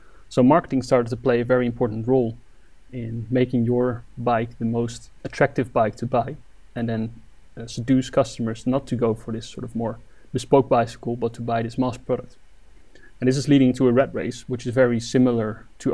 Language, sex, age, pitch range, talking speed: English, male, 30-49, 115-130 Hz, 200 wpm